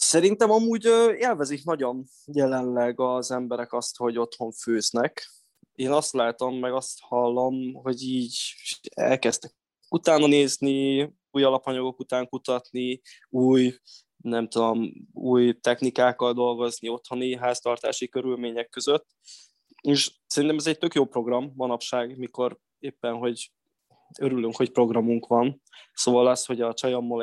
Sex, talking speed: male, 125 wpm